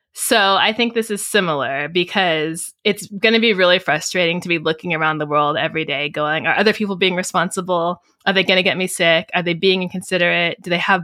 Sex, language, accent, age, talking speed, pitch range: female, English, American, 20-39, 225 wpm, 165-200 Hz